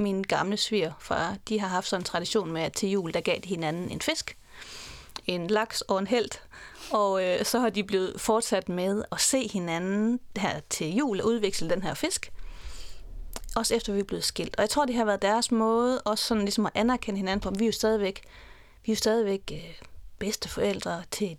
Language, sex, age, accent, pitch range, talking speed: Danish, female, 30-49, native, 185-230 Hz, 215 wpm